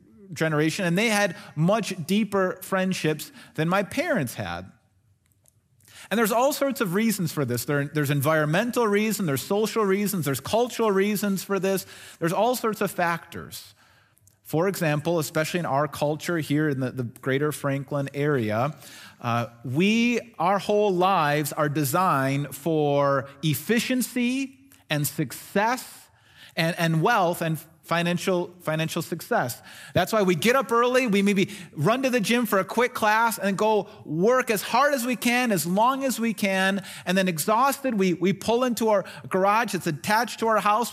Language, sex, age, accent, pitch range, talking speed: English, male, 30-49, American, 140-210 Hz, 160 wpm